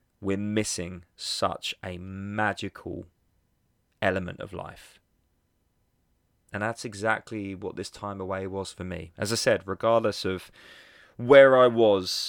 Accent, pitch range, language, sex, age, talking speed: British, 90-115 Hz, English, male, 20-39, 125 wpm